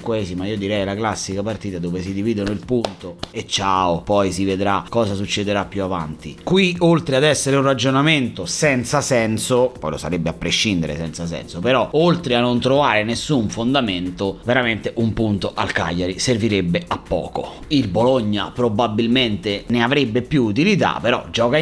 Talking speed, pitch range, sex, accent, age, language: 165 wpm, 100-145 Hz, male, native, 30-49, Italian